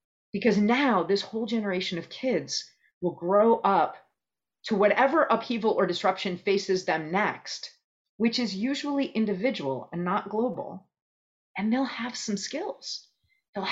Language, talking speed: English, 135 wpm